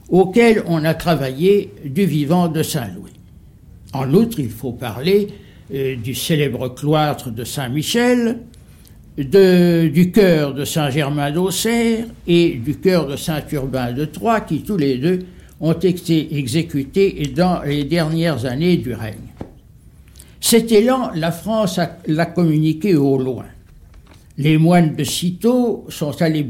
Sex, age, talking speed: male, 60-79, 135 wpm